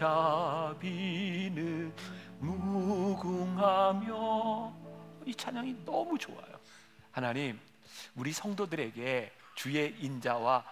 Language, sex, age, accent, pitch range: Korean, male, 40-59, native, 145-225 Hz